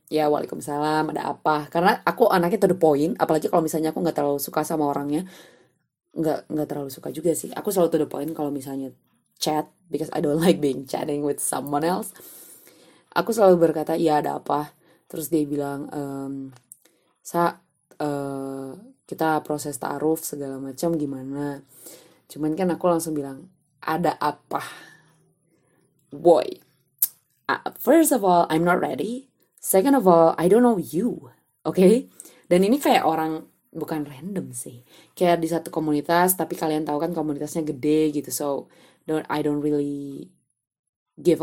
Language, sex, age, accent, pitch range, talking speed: Indonesian, female, 20-39, native, 145-170 Hz, 155 wpm